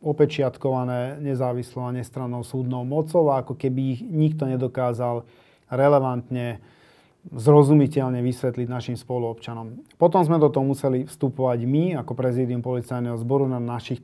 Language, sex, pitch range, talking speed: Slovak, male, 125-145 Hz, 125 wpm